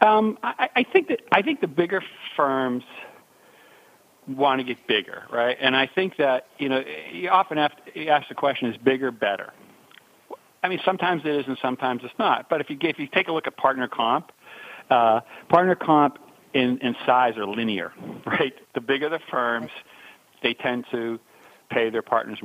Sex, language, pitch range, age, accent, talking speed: male, English, 120-145 Hz, 50-69, American, 185 wpm